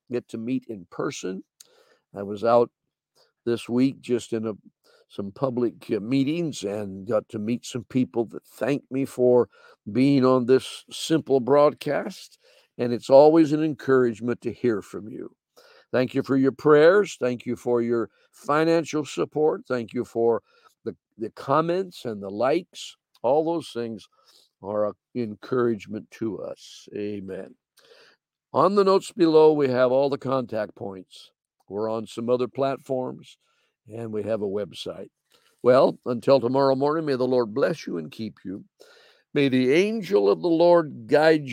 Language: English